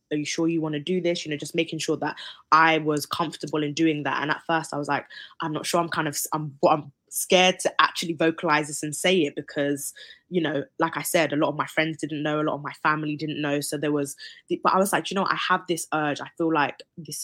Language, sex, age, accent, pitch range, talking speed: English, female, 20-39, British, 150-175 Hz, 275 wpm